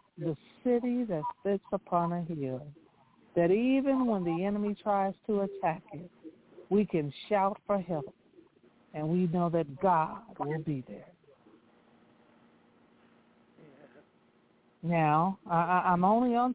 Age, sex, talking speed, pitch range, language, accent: 60-79, female, 120 wpm, 155-200 Hz, English, American